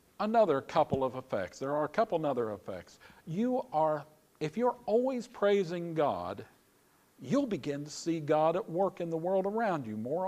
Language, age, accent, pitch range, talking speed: English, 50-69, American, 140-200 Hz, 180 wpm